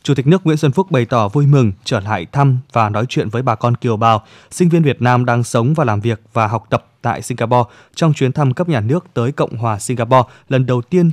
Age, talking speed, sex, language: 20-39, 260 wpm, male, Vietnamese